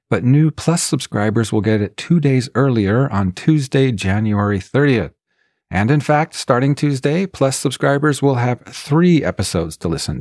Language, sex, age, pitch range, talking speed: English, male, 40-59, 95-130 Hz, 160 wpm